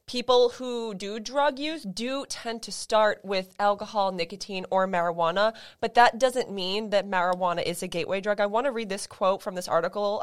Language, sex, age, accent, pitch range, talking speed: English, female, 20-39, American, 175-220 Hz, 195 wpm